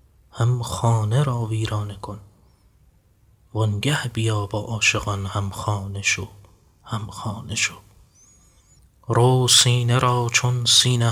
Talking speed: 110 wpm